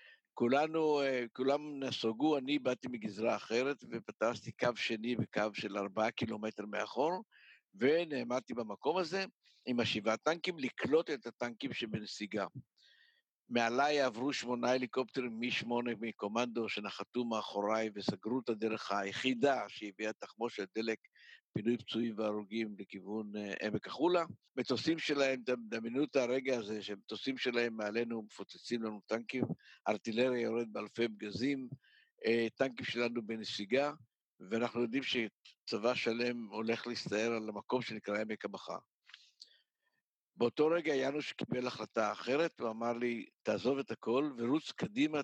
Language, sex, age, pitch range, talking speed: Hebrew, male, 60-79, 110-130 Hz, 120 wpm